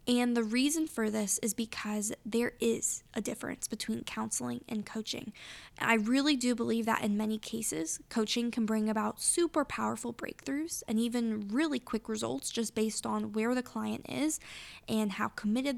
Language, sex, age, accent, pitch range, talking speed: English, female, 10-29, American, 220-255 Hz, 170 wpm